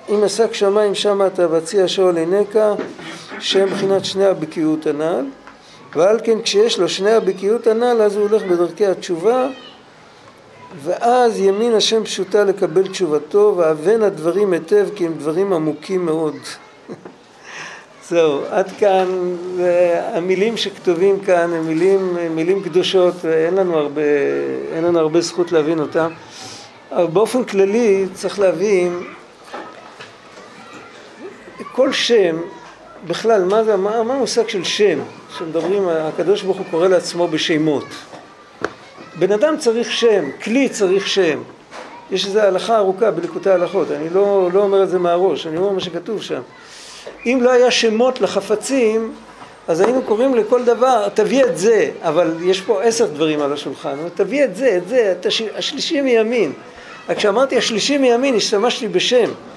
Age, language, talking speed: 50-69, Hebrew, 135 wpm